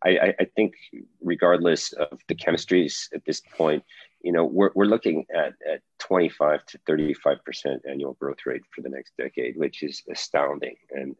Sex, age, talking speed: male, 40-59, 180 wpm